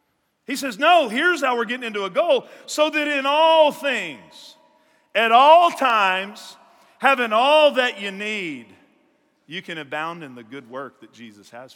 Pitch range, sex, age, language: 195-275 Hz, male, 50-69, English